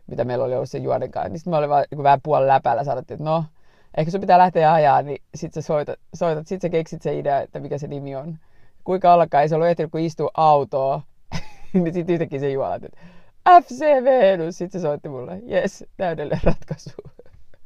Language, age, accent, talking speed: Finnish, 30-49, native, 215 wpm